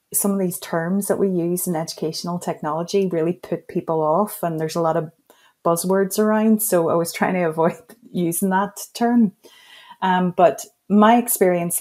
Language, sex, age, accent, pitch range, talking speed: English, female, 30-49, Irish, 170-210 Hz, 175 wpm